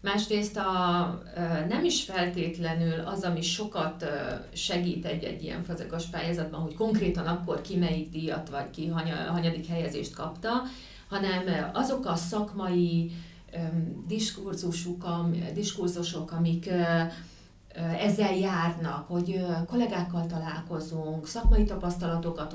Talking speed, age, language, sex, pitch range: 100 wpm, 40-59, Hungarian, female, 165-190 Hz